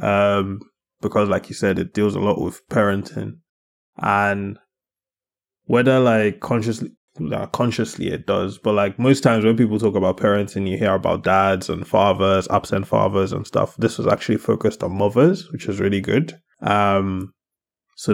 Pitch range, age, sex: 95-110 Hz, 20-39, male